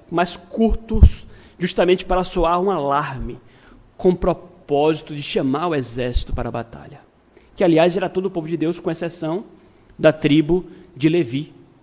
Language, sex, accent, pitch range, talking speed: Portuguese, male, Brazilian, 145-200 Hz, 155 wpm